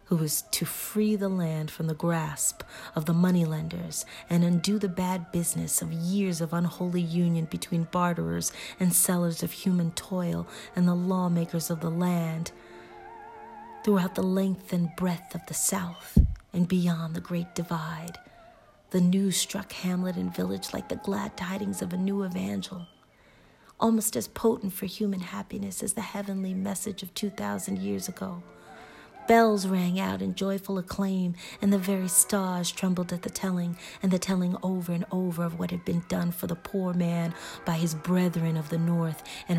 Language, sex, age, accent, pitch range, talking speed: English, female, 40-59, American, 170-195 Hz, 170 wpm